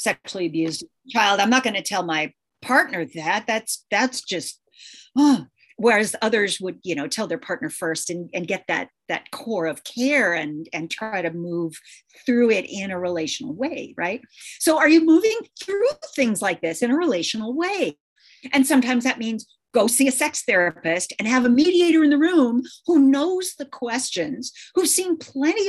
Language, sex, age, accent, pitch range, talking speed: English, female, 40-59, American, 185-275 Hz, 185 wpm